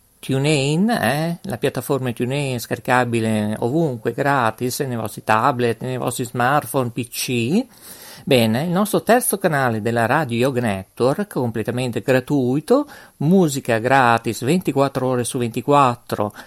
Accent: native